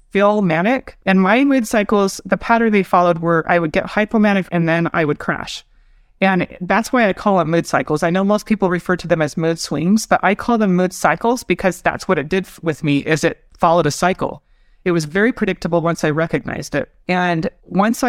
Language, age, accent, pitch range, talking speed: English, 30-49, American, 170-205 Hz, 220 wpm